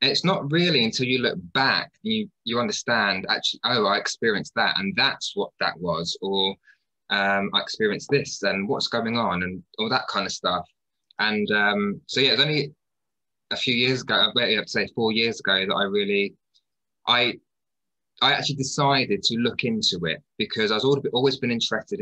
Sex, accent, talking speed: male, British, 185 wpm